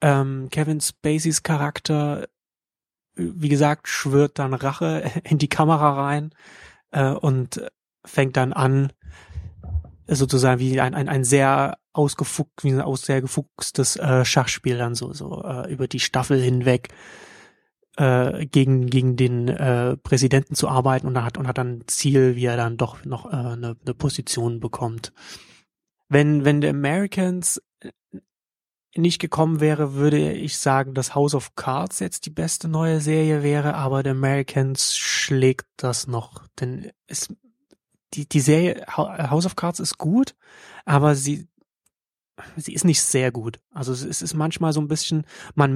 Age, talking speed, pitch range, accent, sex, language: 30-49, 150 wpm, 130-155 Hz, German, male, German